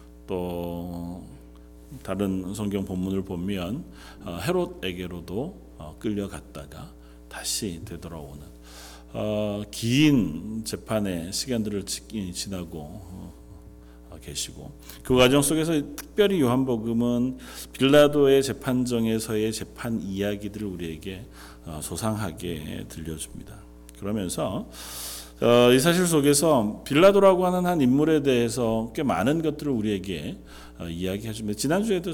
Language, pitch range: Korean, 85-120 Hz